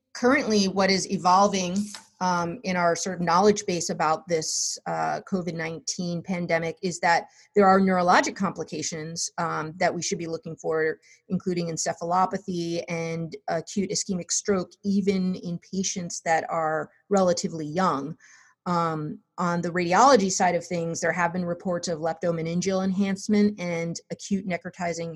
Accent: American